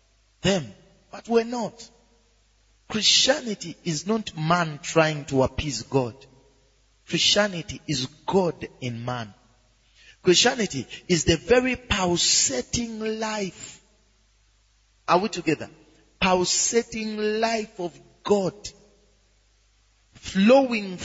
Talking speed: 90 wpm